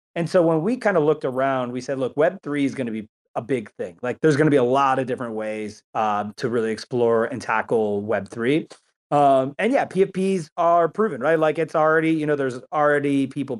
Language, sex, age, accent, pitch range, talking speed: English, male, 30-49, American, 125-155 Hz, 220 wpm